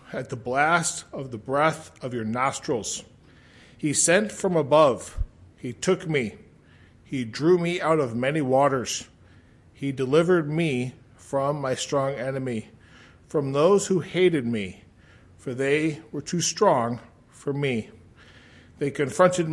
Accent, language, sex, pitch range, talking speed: American, English, male, 120-155 Hz, 135 wpm